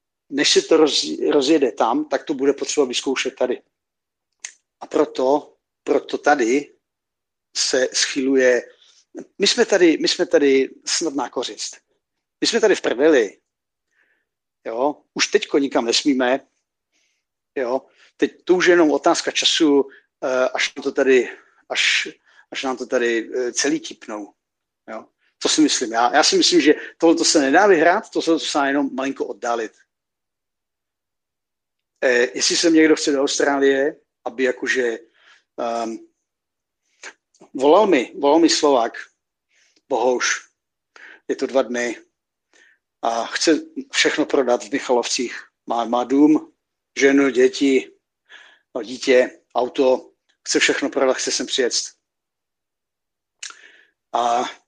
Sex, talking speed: male, 120 wpm